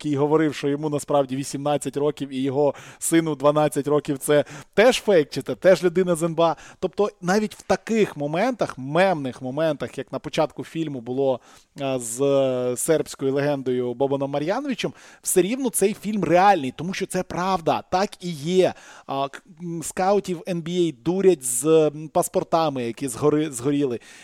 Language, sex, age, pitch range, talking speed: Ukrainian, male, 20-39, 140-180 Hz, 145 wpm